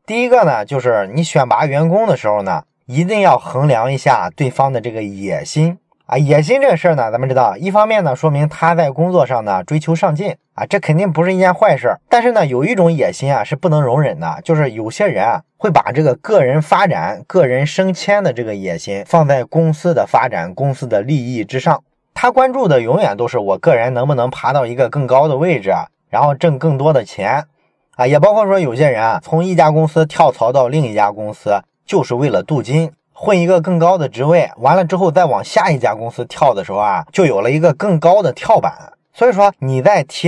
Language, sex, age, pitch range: Chinese, male, 20-39, 130-180 Hz